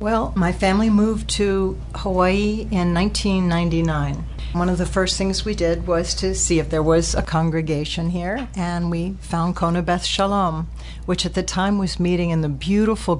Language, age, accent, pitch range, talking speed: English, 60-79, American, 160-195 Hz, 175 wpm